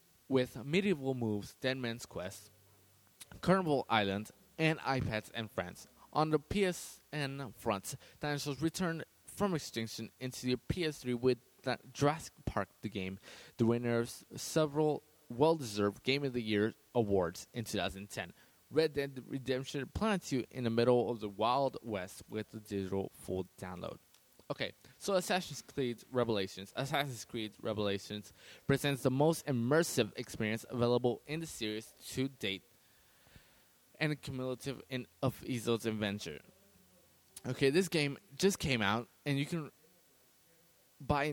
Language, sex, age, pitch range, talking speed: English, male, 20-39, 110-145 Hz, 140 wpm